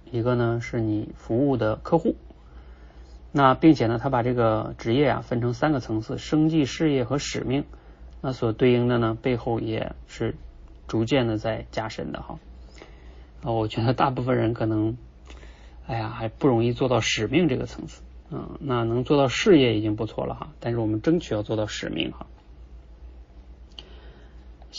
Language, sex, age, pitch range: Chinese, male, 30-49, 105-130 Hz